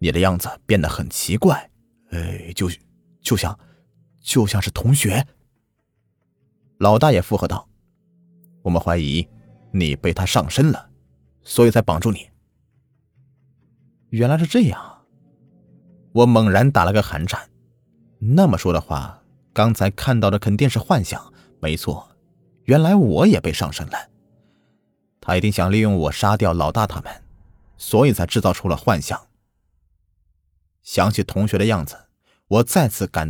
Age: 30-49